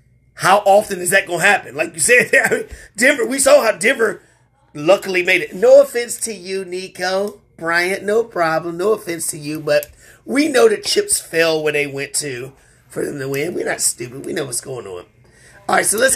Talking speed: 210 wpm